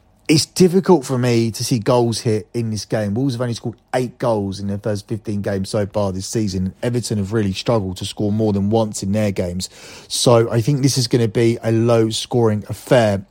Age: 30-49